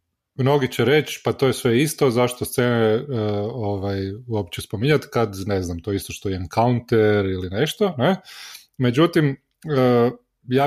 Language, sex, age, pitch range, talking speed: Croatian, male, 30-49, 95-125 Hz, 150 wpm